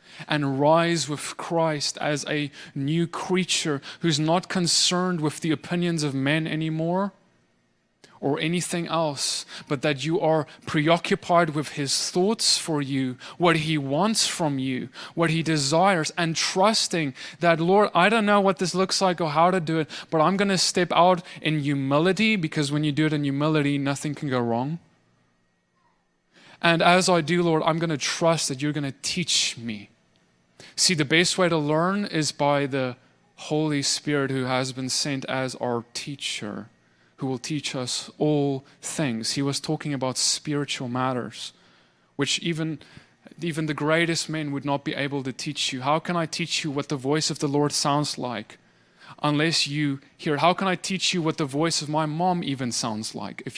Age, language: 20-39, English